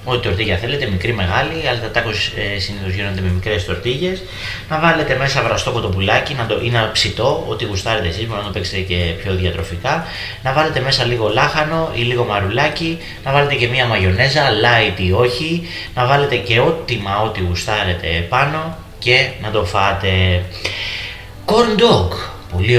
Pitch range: 95-125 Hz